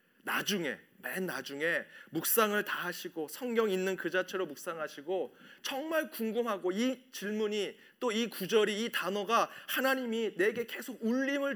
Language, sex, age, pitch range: Korean, male, 40-59, 170-235 Hz